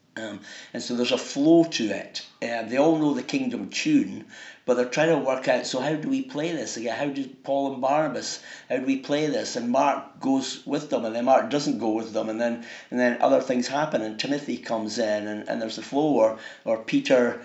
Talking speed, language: 235 wpm, English